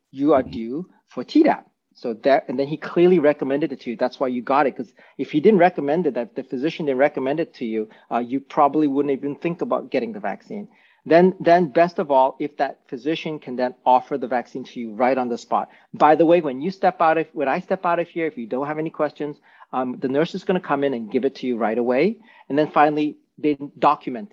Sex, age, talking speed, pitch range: male, 40-59, 250 wpm, 130-165 Hz